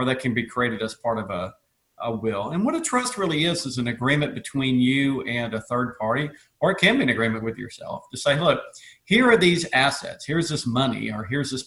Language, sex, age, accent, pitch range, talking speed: English, male, 40-59, American, 120-145 Hz, 240 wpm